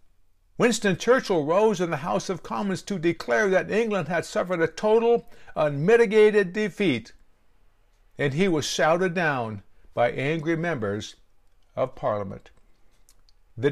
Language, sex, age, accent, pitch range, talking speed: English, male, 60-79, American, 130-200 Hz, 125 wpm